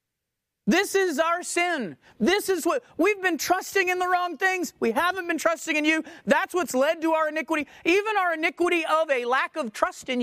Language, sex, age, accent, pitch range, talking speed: English, male, 30-49, American, 215-325 Hz, 205 wpm